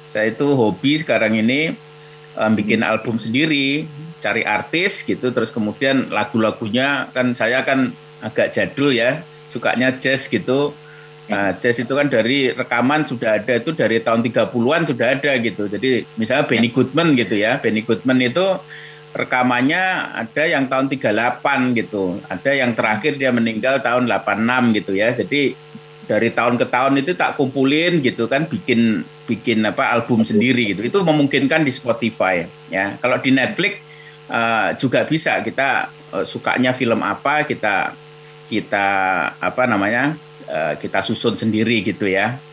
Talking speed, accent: 145 wpm, native